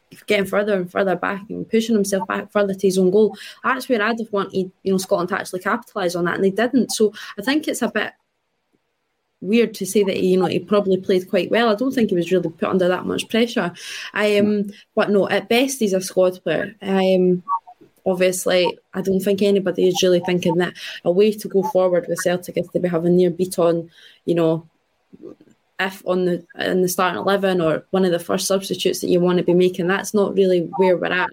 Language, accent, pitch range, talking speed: English, British, 180-205 Hz, 230 wpm